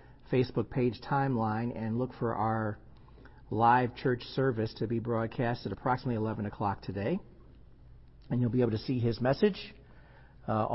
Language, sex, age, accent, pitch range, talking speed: English, male, 50-69, American, 110-130 Hz, 150 wpm